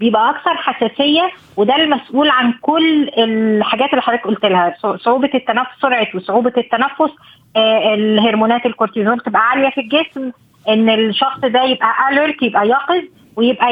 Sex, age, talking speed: female, 20-39, 135 wpm